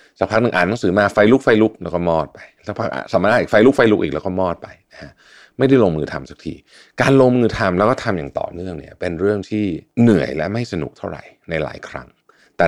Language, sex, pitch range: Thai, male, 80-120 Hz